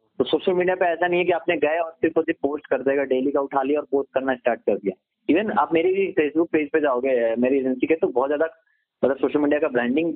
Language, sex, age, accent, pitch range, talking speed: Hindi, male, 30-49, native, 130-170 Hz, 265 wpm